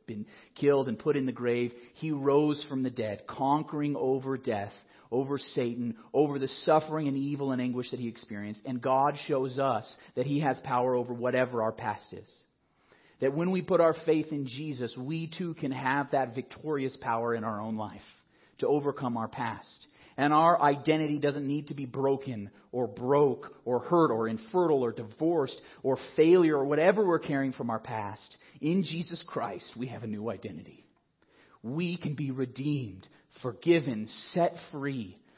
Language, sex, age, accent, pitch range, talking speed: English, male, 30-49, American, 120-150 Hz, 175 wpm